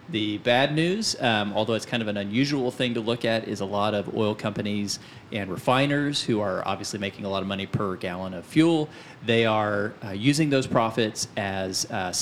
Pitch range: 100-120 Hz